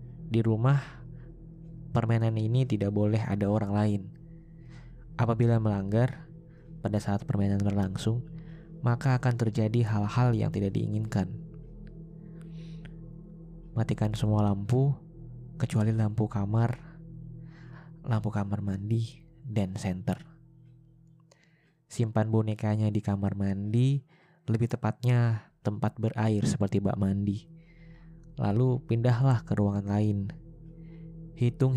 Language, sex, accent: Indonesian, male, native